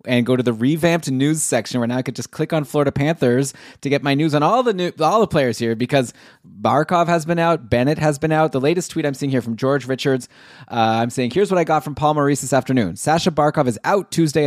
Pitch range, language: 115-140 Hz, English